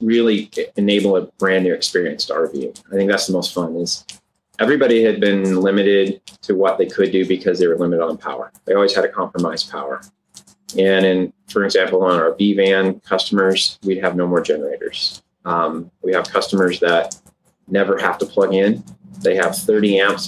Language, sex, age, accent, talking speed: English, male, 30-49, American, 190 wpm